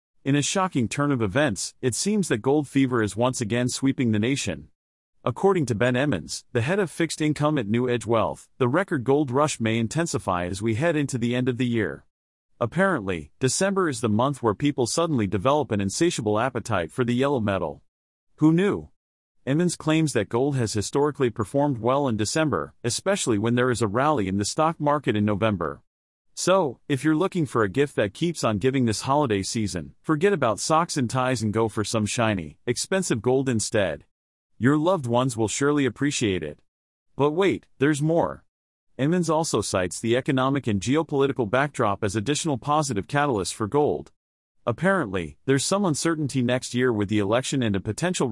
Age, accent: 40-59, American